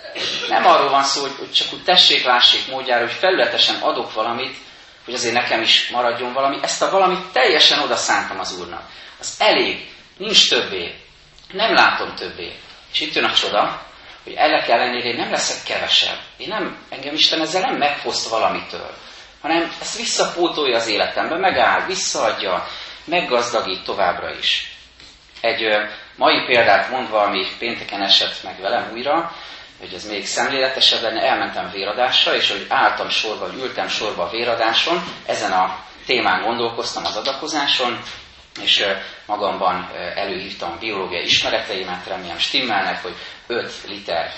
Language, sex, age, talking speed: Hungarian, male, 30-49, 145 wpm